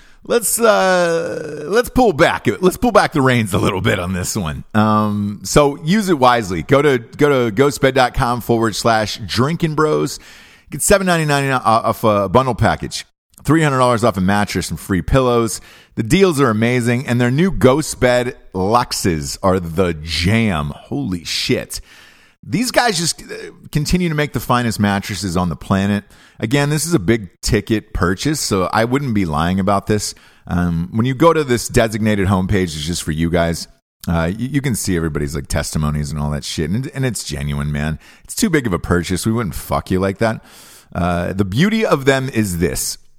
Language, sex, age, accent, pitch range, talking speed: English, male, 30-49, American, 95-135 Hz, 185 wpm